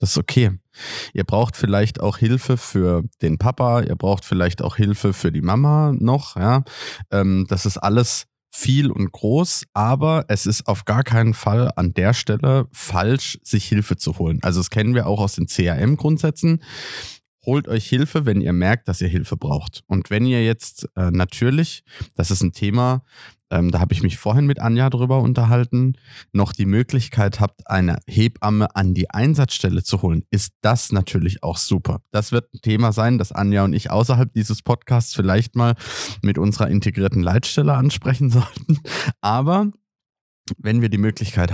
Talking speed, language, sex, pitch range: 175 wpm, German, male, 100-130 Hz